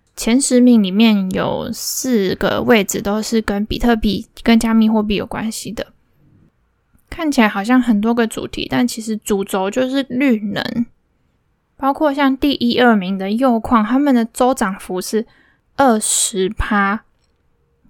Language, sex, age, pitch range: Chinese, female, 10-29, 210-250 Hz